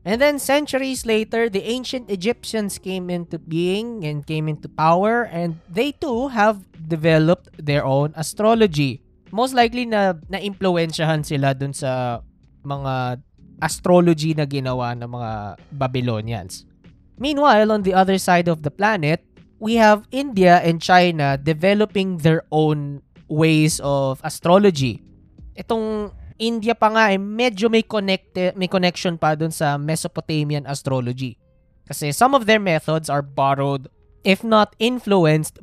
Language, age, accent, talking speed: Filipino, 20-39, native, 135 wpm